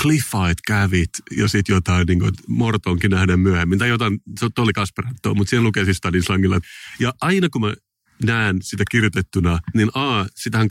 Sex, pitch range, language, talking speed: male, 95-115 Hz, Finnish, 170 wpm